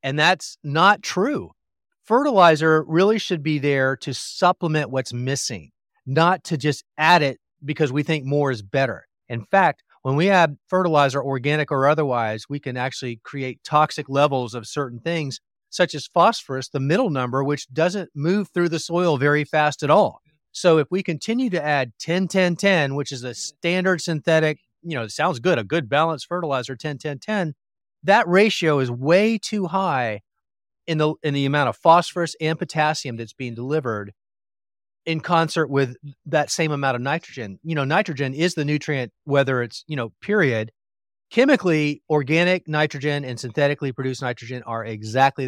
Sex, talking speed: male, 165 wpm